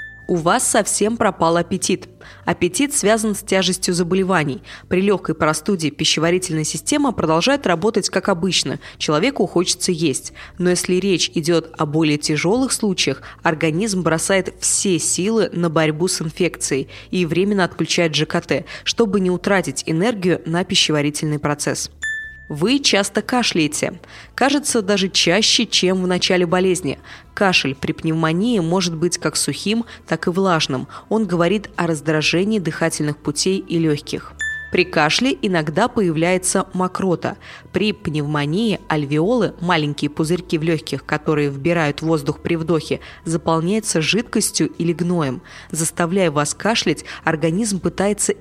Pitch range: 160-200 Hz